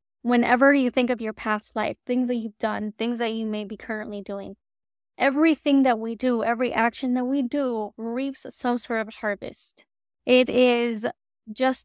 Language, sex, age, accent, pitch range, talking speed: English, female, 20-39, American, 215-250 Hz, 175 wpm